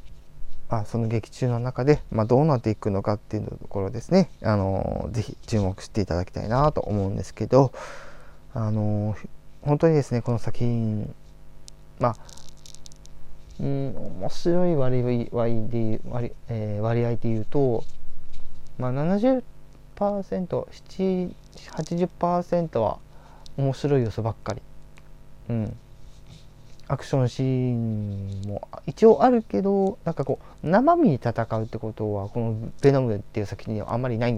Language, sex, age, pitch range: Japanese, male, 20-39, 105-140 Hz